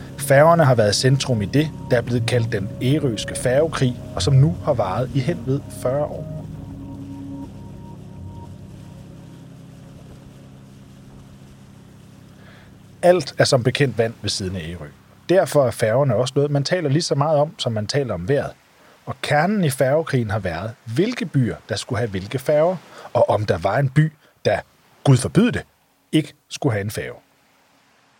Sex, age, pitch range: male, 40-59, 100-145 Hz